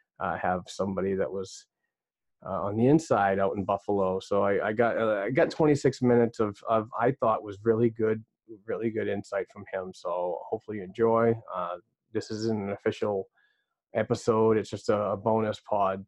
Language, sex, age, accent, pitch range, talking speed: English, male, 30-49, American, 100-110 Hz, 180 wpm